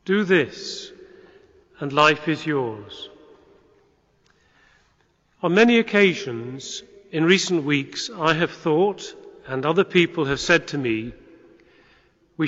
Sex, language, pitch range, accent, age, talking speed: male, English, 155-195 Hz, British, 40-59, 110 wpm